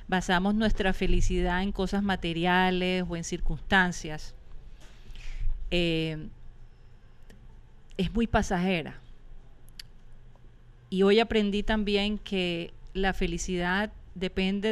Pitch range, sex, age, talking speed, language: 165-200 Hz, female, 40-59, 85 wpm, Spanish